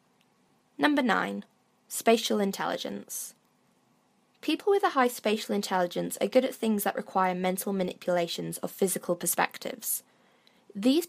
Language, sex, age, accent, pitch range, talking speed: English, female, 20-39, British, 190-255 Hz, 120 wpm